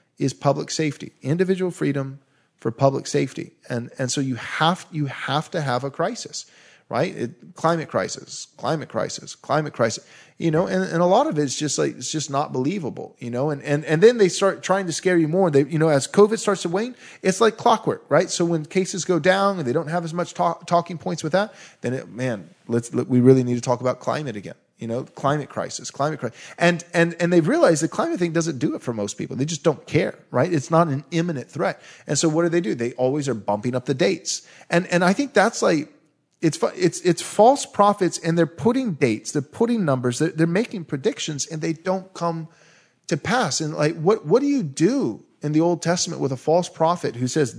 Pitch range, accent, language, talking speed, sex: 140-180 Hz, American, English, 230 wpm, male